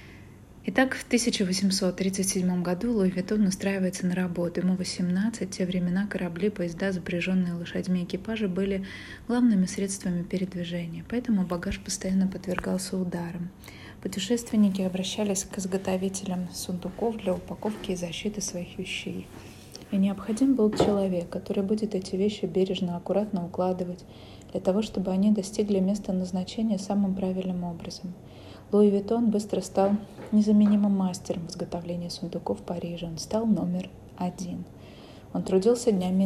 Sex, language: female, Russian